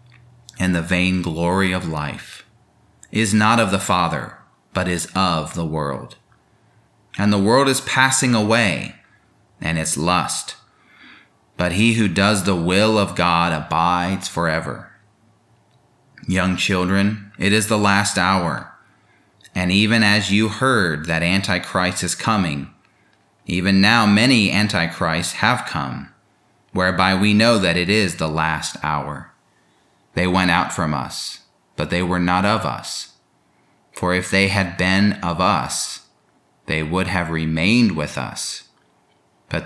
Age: 30-49